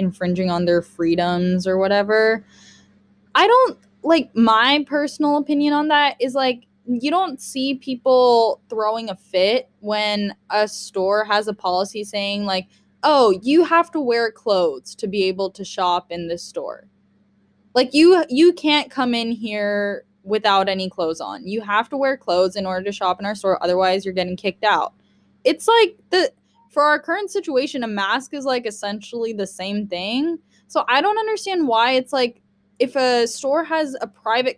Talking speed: 175 wpm